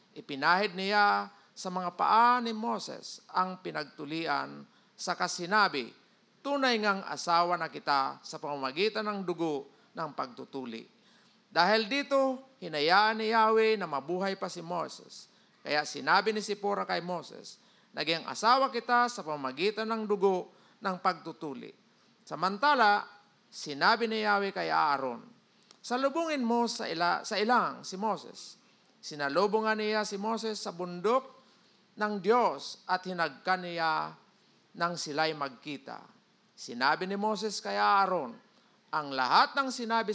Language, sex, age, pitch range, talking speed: Filipino, male, 40-59, 170-220 Hz, 125 wpm